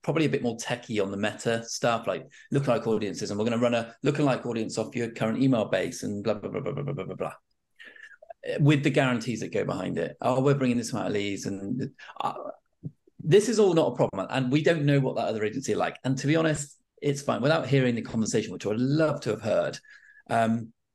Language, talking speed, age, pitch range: English, 240 wpm, 30-49, 115-150 Hz